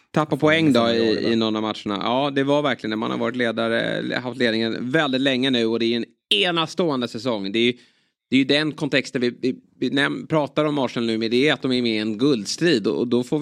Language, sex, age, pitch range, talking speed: Swedish, male, 20-39, 110-130 Hz, 235 wpm